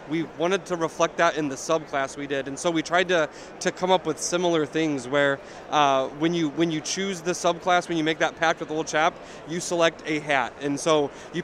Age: 30-49